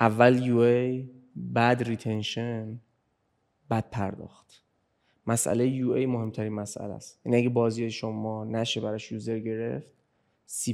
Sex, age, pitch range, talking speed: male, 20-39, 115-130 Hz, 125 wpm